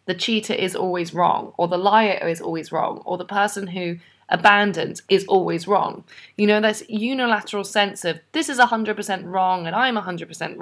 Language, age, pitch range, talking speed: English, 20-39, 175-210 Hz, 180 wpm